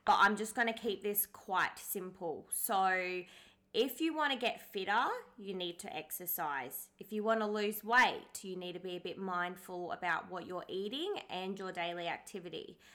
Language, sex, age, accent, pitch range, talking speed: English, female, 20-39, Australian, 180-210 Hz, 190 wpm